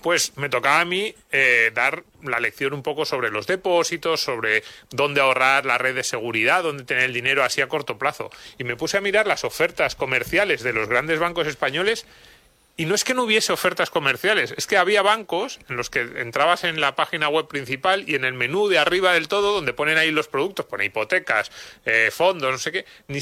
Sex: male